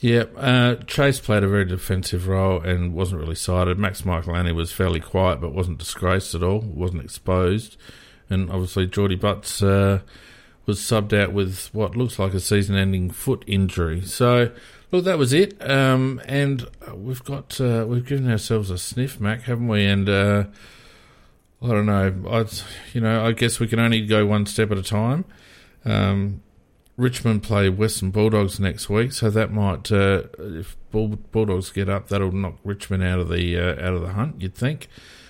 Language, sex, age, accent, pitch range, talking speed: English, male, 50-69, Australian, 90-110 Hz, 180 wpm